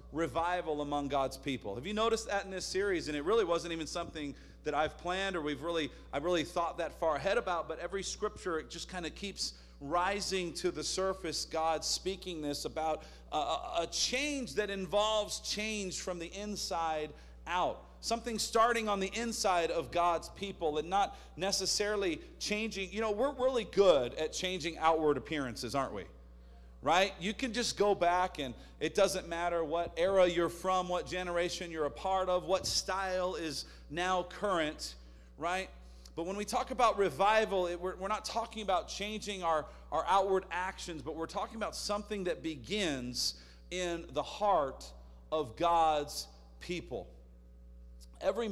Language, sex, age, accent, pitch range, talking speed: English, male, 40-59, American, 145-200 Hz, 165 wpm